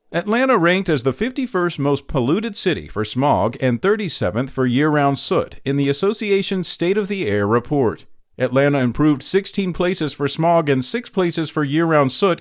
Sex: male